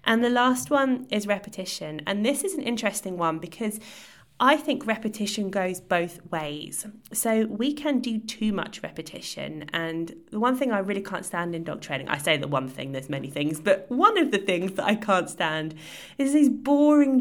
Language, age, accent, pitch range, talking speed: English, 20-39, British, 170-225 Hz, 200 wpm